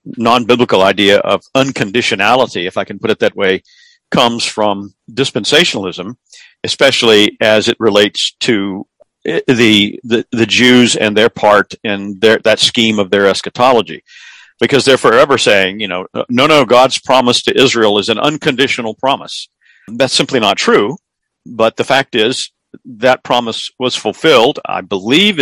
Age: 50-69